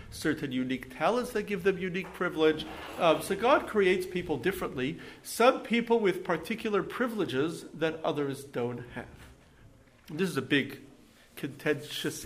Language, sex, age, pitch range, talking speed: English, male, 50-69, 130-185 Hz, 135 wpm